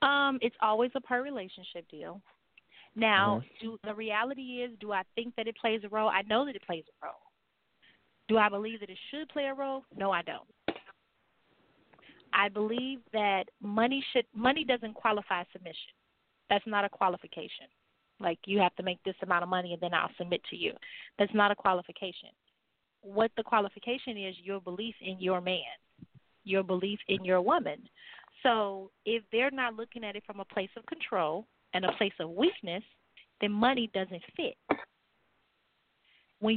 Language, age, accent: English, 30-49, American